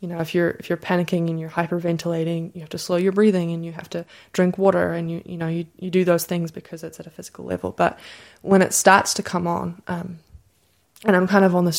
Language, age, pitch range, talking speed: English, 20-39, 170-185 Hz, 260 wpm